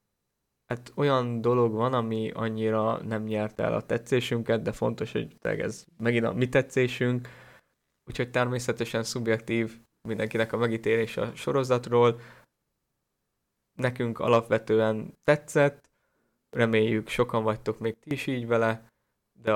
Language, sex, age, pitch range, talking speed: Hungarian, male, 20-39, 110-125 Hz, 125 wpm